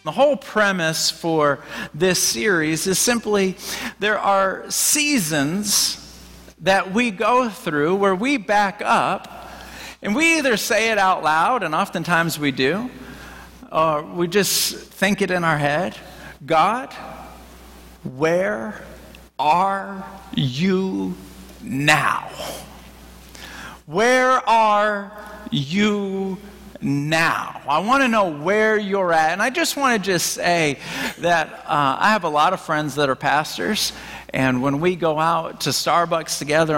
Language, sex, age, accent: English, male, 50-69, American